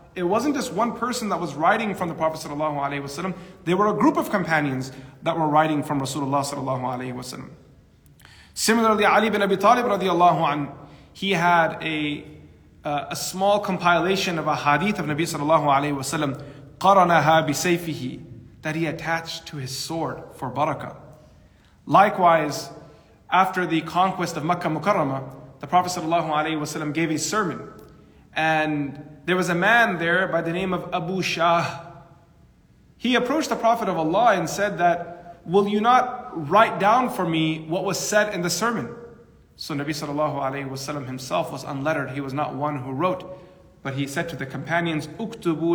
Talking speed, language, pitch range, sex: 155 wpm, English, 145-185 Hz, male